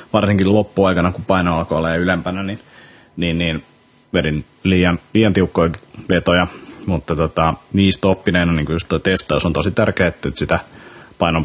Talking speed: 145 wpm